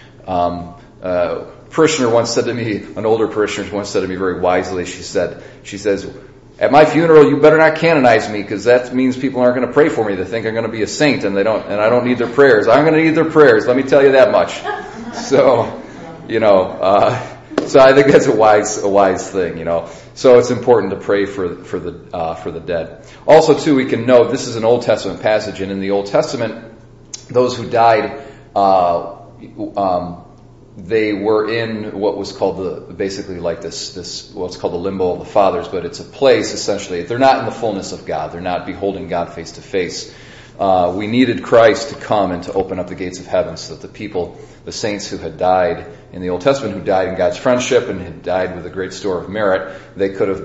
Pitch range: 95-125 Hz